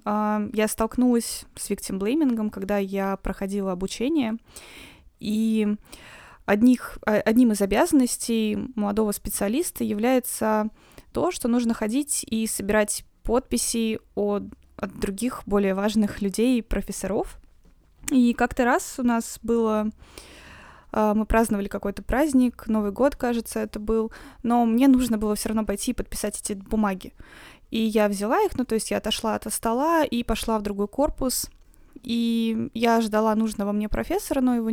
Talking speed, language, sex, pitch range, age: 145 wpm, Russian, female, 210-245 Hz, 20-39